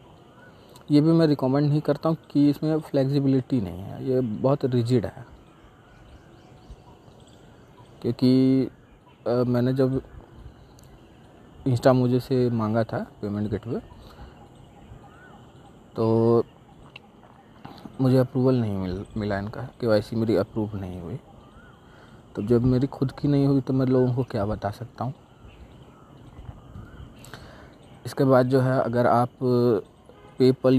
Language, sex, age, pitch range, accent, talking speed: Hindi, male, 40-59, 110-130 Hz, native, 120 wpm